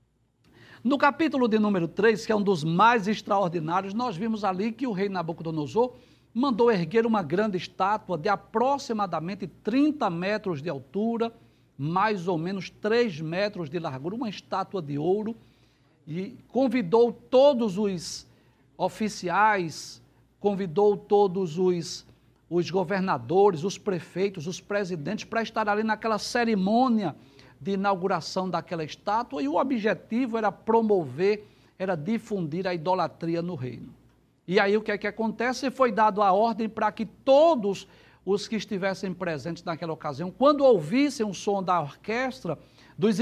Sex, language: male, Portuguese